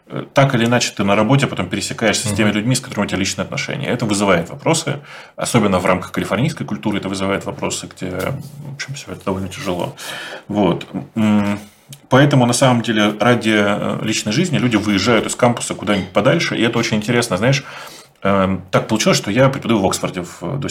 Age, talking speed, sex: 30-49, 175 wpm, male